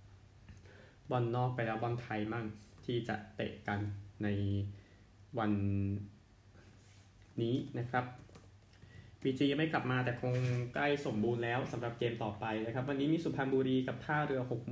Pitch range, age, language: 105-125 Hz, 20-39, Thai